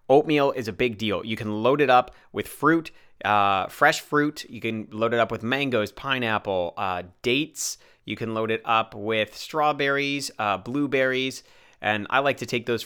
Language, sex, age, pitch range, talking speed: English, male, 30-49, 100-130 Hz, 185 wpm